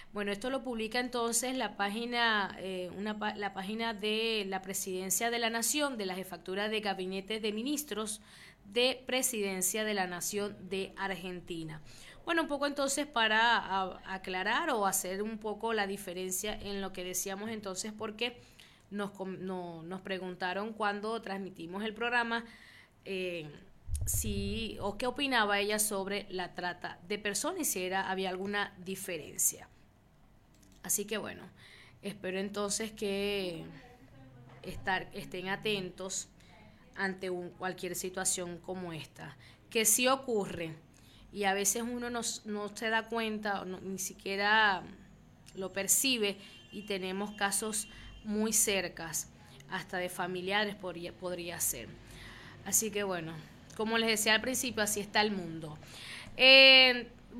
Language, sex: Spanish, female